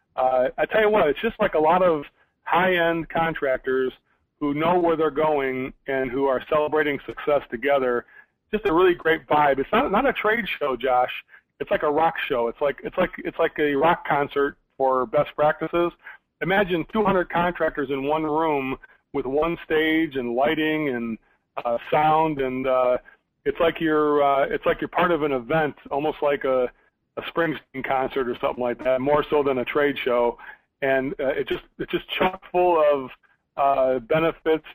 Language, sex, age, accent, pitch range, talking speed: English, male, 40-59, American, 135-165 Hz, 190 wpm